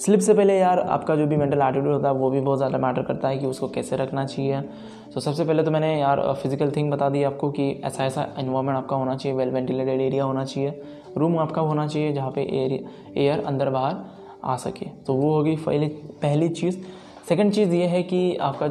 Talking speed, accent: 230 wpm, native